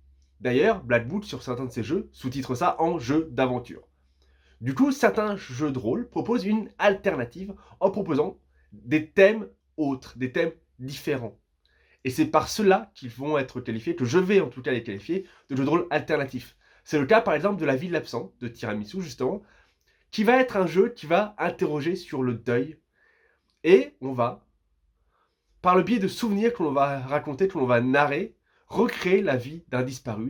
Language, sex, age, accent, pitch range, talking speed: French, male, 20-39, French, 115-175 Hz, 190 wpm